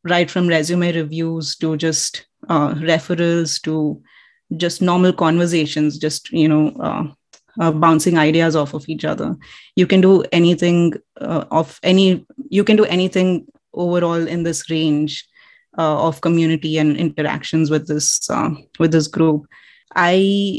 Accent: Indian